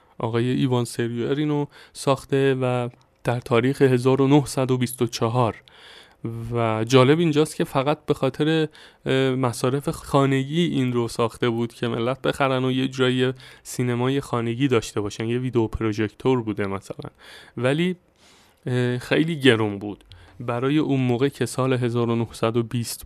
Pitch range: 120-145 Hz